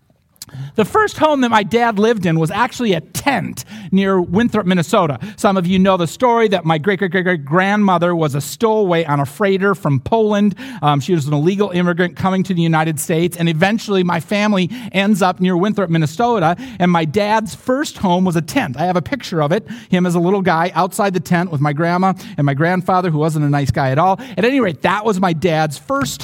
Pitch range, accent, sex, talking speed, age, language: 150-210 Hz, American, male, 215 wpm, 40-59, English